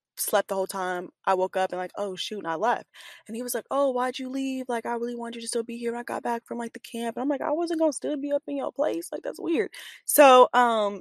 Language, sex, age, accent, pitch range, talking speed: English, female, 10-29, American, 195-270 Hz, 305 wpm